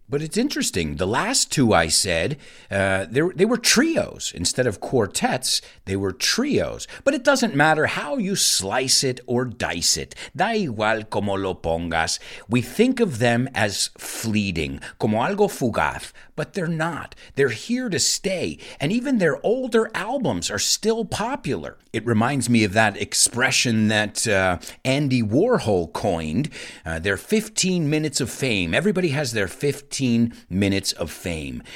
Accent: American